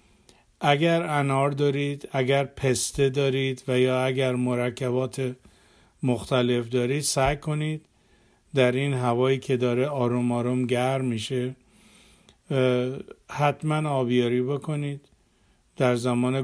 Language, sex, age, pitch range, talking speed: Persian, male, 50-69, 130-145 Hz, 100 wpm